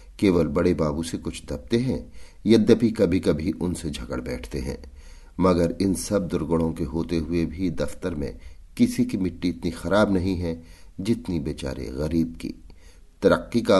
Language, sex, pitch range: Hindi, male, 70-95 Hz